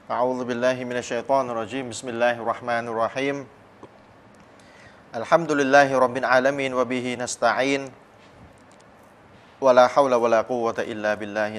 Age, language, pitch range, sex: 30-49, Thai, 105-125 Hz, male